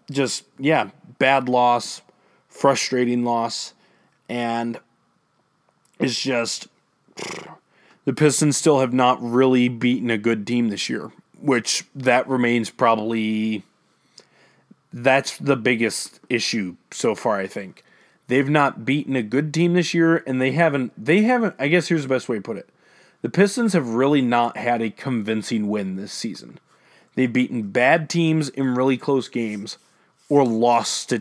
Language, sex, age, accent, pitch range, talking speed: English, male, 20-39, American, 115-155 Hz, 150 wpm